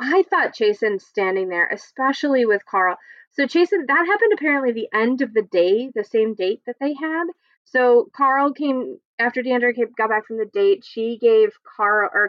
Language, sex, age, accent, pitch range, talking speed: English, female, 20-39, American, 205-280 Hz, 185 wpm